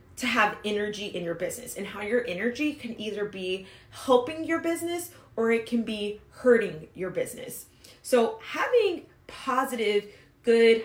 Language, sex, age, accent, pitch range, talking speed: English, female, 20-39, American, 190-255 Hz, 150 wpm